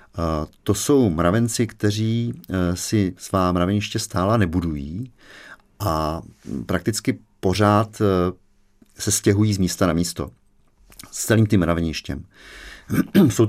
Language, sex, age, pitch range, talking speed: Czech, male, 40-59, 85-105 Hz, 100 wpm